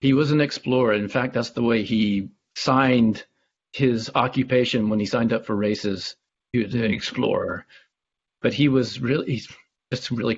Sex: male